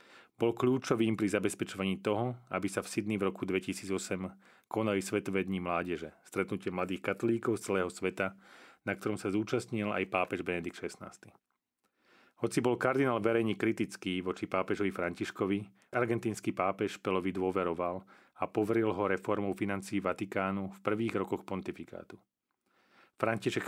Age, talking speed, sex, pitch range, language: 30-49, 130 wpm, male, 95-110 Hz, Slovak